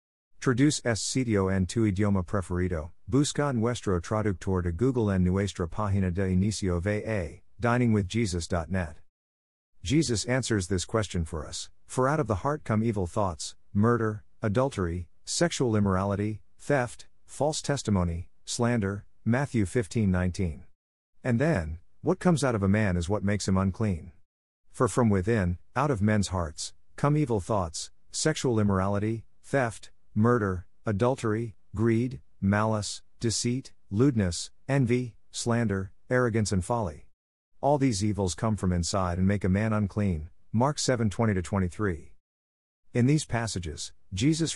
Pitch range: 90-115 Hz